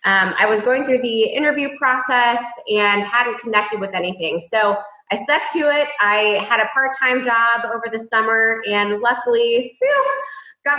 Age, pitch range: 20-39, 210-255 Hz